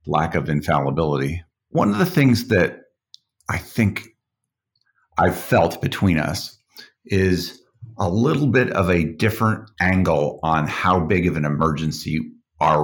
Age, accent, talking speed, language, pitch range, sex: 50-69, American, 135 wpm, English, 85-100 Hz, male